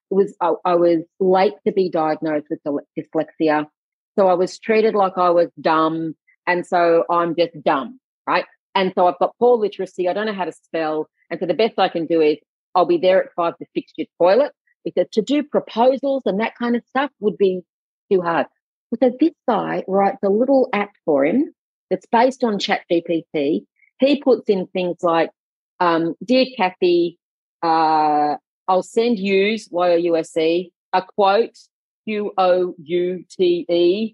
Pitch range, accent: 170-230 Hz, Australian